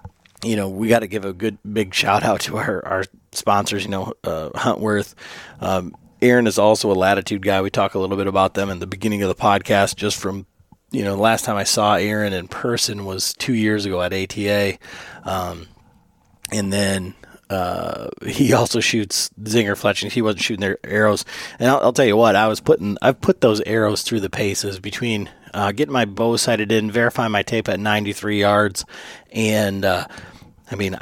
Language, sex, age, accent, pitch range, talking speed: English, male, 30-49, American, 95-110 Hz, 200 wpm